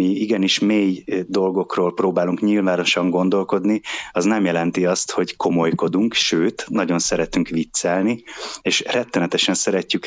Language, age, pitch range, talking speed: Hungarian, 30-49, 90-105 Hz, 120 wpm